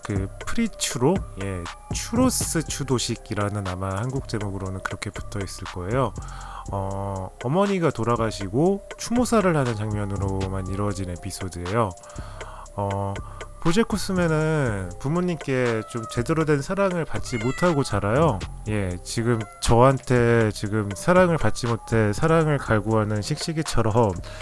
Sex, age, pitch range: male, 20-39, 105-145 Hz